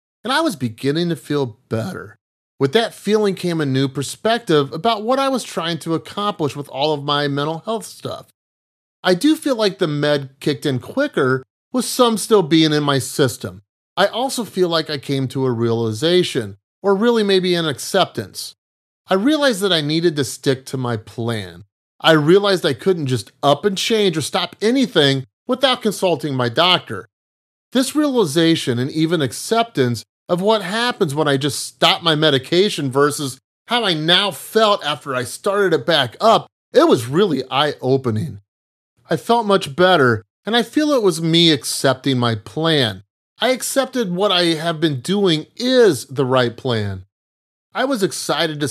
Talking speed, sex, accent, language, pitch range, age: 170 wpm, male, American, English, 130-200 Hz, 30-49